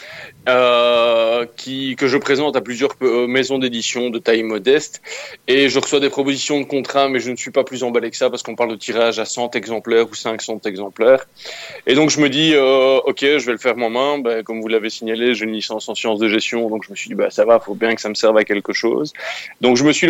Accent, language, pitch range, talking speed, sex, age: French, French, 110-135 Hz, 265 wpm, male, 20-39